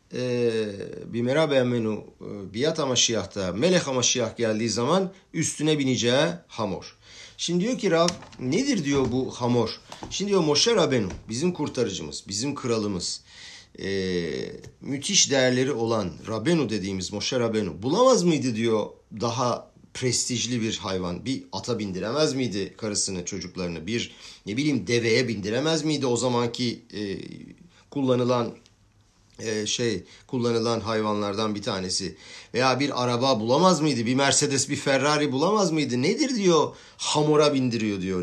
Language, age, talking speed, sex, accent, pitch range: Turkish, 50-69, 130 wpm, male, native, 110-150 Hz